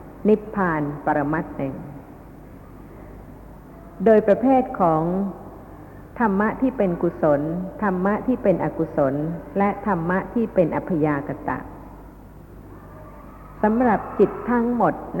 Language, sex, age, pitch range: Thai, female, 60-79, 155-210 Hz